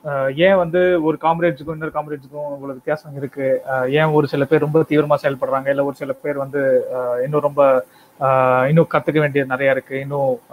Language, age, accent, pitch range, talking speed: Tamil, 20-39, native, 135-160 Hz, 160 wpm